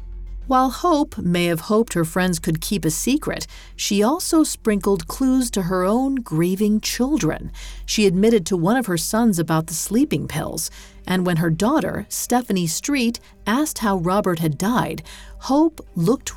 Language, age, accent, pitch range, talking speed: English, 40-59, American, 165-235 Hz, 160 wpm